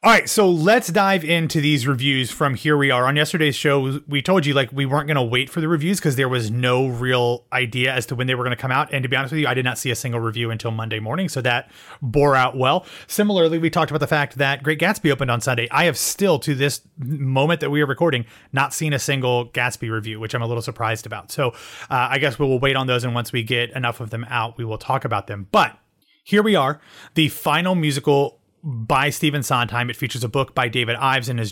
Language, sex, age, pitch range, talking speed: English, male, 30-49, 125-150 Hz, 265 wpm